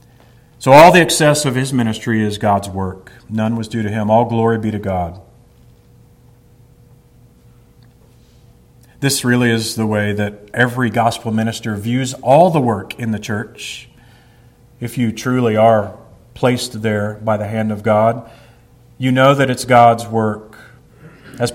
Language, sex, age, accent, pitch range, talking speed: English, male, 40-59, American, 110-130 Hz, 150 wpm